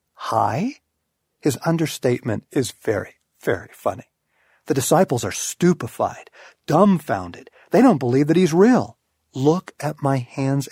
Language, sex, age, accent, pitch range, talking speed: English, male, 40-59, American, 125-175 Hz, 125 wpm